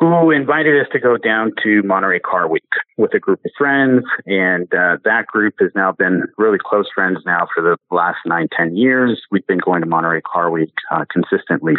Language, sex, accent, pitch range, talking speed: English, male, American, 100-145 Hz, 210 wpm